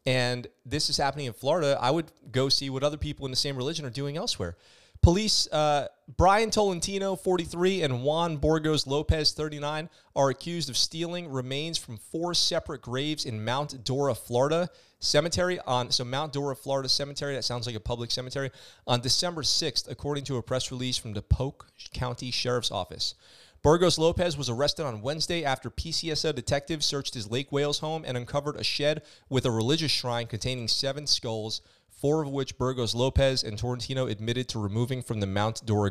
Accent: American